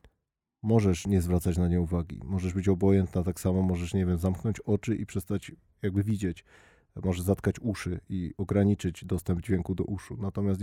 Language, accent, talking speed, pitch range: Polish, native, 170 wpm, 95-105 Hz